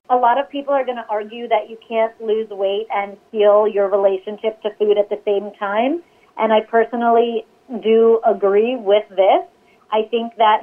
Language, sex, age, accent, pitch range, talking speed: English, female, 30-49, American, 205-235 Hz, 185 wpm